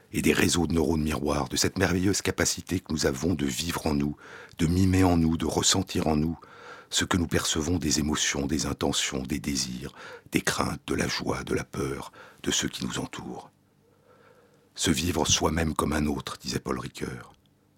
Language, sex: French, male